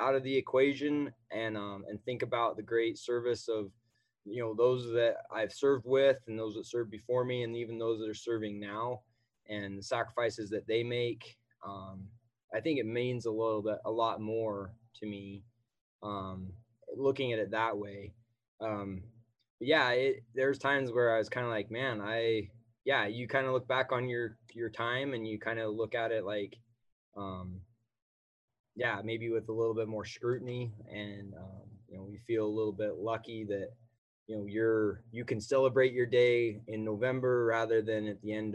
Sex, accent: male, American